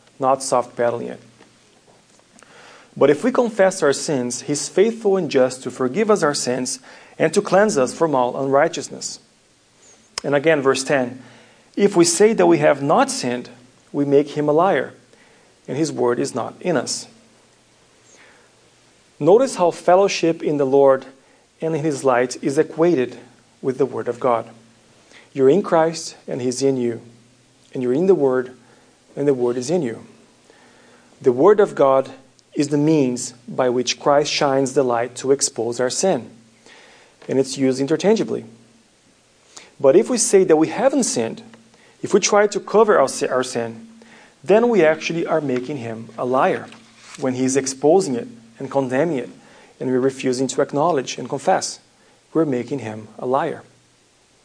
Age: 40-59